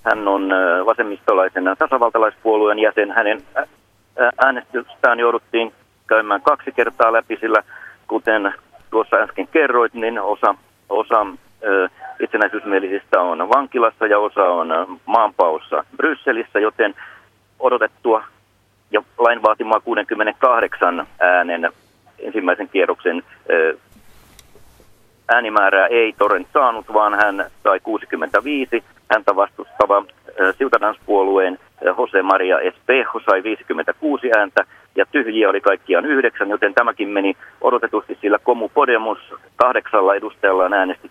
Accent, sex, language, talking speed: native, male, Finnish, 100 wpm